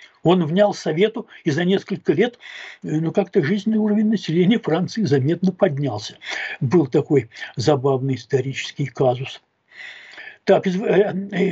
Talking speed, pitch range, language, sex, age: 110 wpm, 150-200 Hz, Russian, male, 60-79